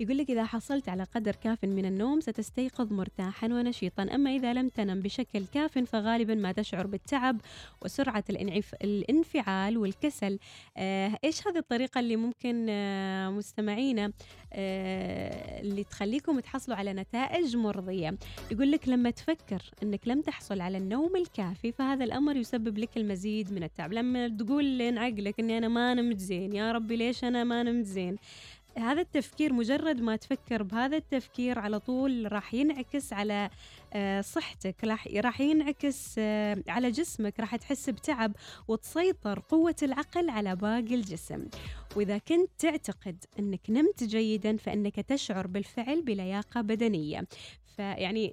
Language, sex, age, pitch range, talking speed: Arabic, female, 20-39, 200-260 Hz, 130 wpm